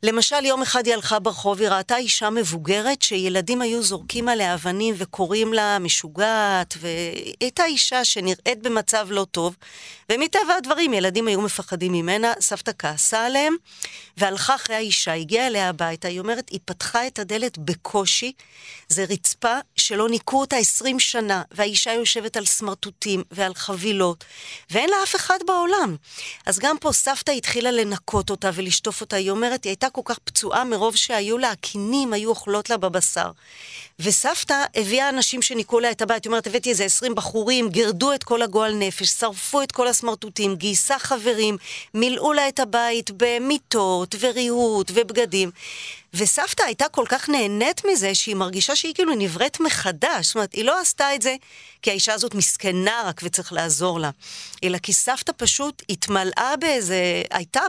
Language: Hebrew